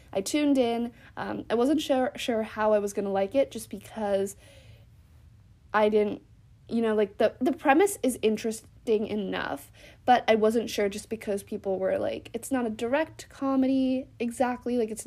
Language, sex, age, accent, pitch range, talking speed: English, female, 20-39, American, 200-240 Hz, 180 wpm